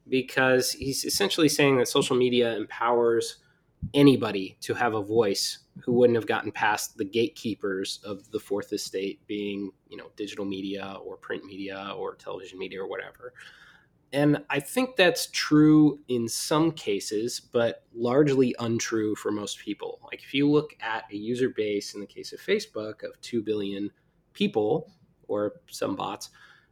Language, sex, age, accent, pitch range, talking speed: English, male, 20-39, American, 105-150 Hz, 160 wpm